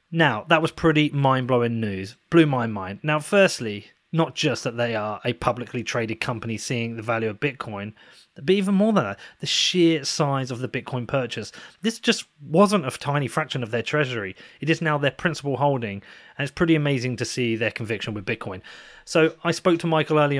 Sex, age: male, 30-49